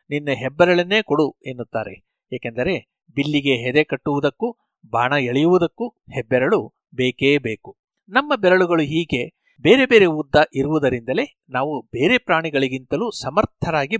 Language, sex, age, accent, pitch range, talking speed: Kannada, male, 60-79, native, 130-180 Hz, 105 wpm